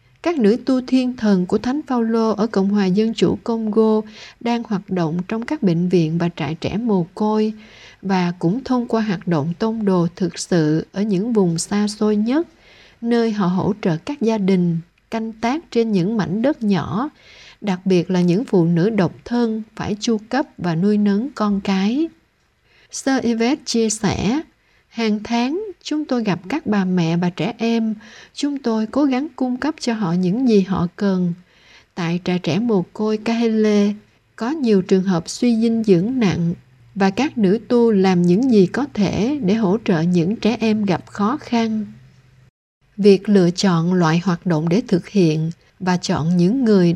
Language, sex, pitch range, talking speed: Vietnamese, female, 180-230 Hz, 185 wpm